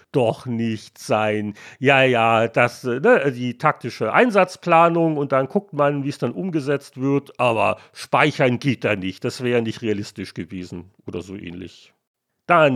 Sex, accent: male, German